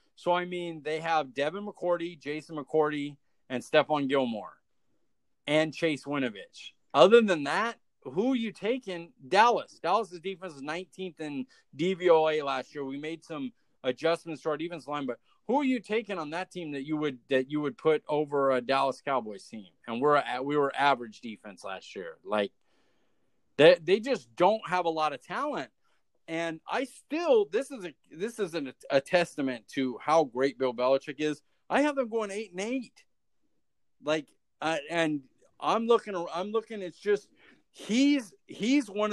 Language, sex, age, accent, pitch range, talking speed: English, male, 30-49, American, 140-200 Hz, 175 wpm